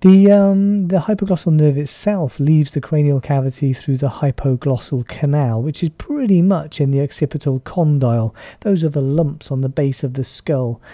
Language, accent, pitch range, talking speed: English, British, 125-155 Hz, 170 wpm